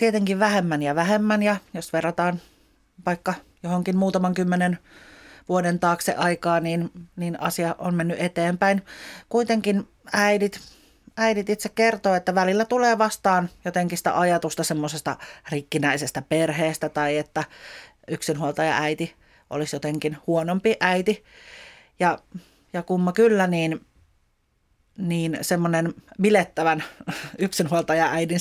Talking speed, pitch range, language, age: 110 wpm, 155-190 Hz, Finnish, 40-59